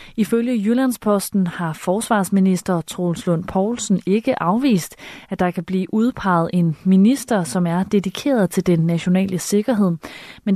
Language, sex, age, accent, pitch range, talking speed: Danish, female, 30-49, native, 180-220 Hz, 135 wpm